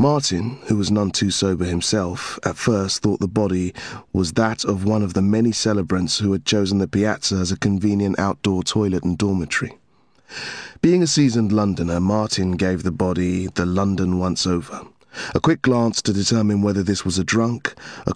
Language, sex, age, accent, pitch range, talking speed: English, male, 30-49, British, 95-115 Hz, 180 wpm